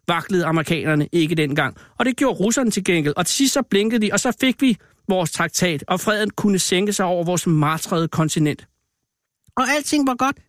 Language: Danish